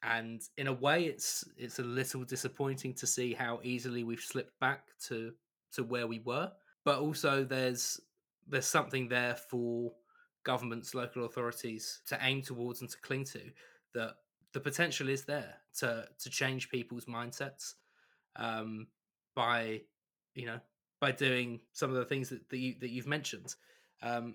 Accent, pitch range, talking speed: British, 115-135 Hz, 160 wpm